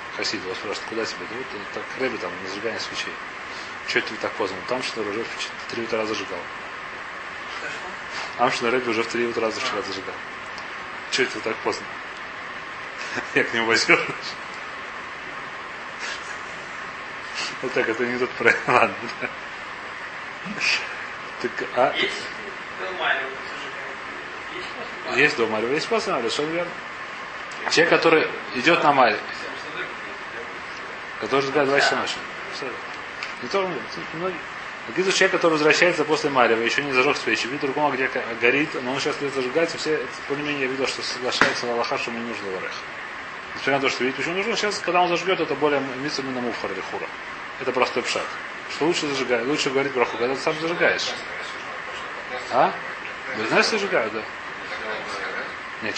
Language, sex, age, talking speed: Russian, male, 30-49, 150 wpm